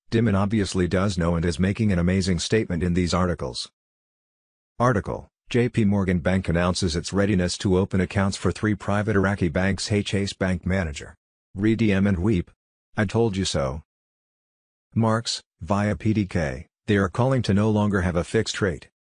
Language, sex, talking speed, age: English, male, 165 wpm, 50-69